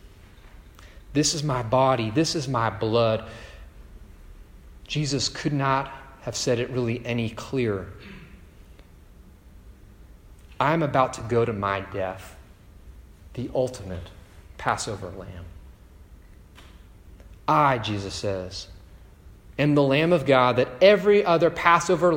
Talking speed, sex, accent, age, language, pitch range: 110 wpm, male, American, 30-49, English, 95-145 Hz